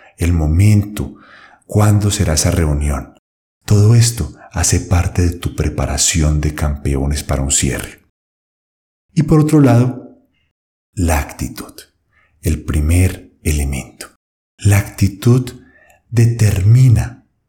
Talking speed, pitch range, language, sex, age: 105 wpm, 80-110 Hz, Spanish, male, 40-59